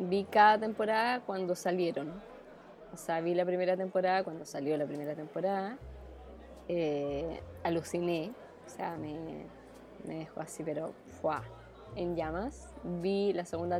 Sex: female